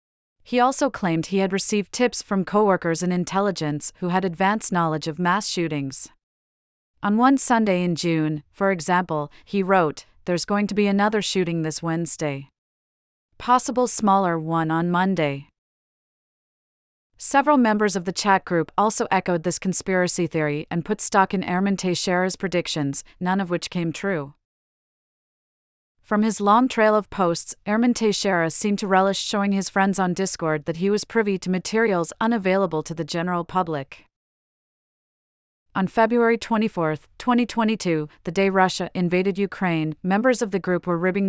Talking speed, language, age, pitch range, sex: 155 wpm, English, 30-49, 165-205 Hz, female